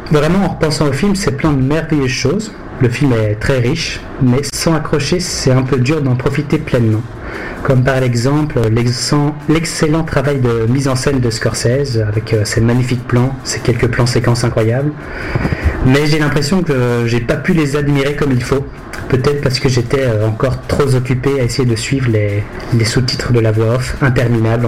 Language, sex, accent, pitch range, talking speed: French, male, French, 120-150 Hz, 190 wpm